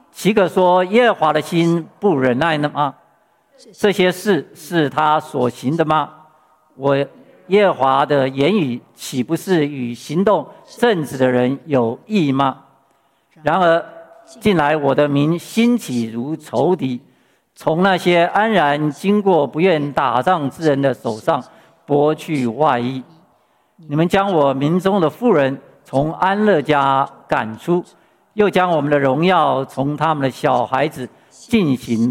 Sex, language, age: male, Chinese, 50-69